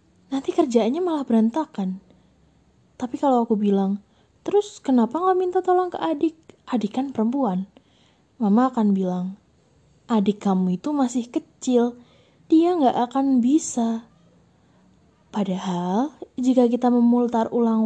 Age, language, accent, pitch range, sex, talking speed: 20-39, Indonesian, native, 220-275 Hz, female, 120 wpm